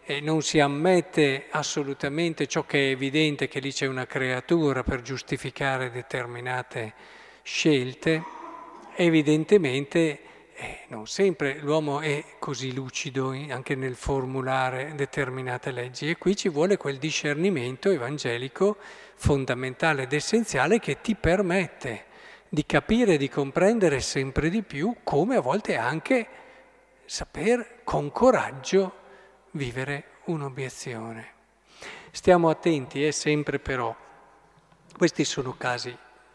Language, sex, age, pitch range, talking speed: Italian, male, 50-69, 135-175 Hz, 110 wpm